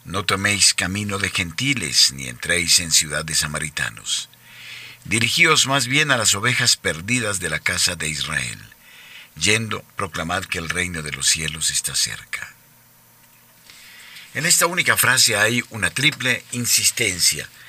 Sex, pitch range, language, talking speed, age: male, 80-115 Hz, Spanish, 135 wpm, 50-69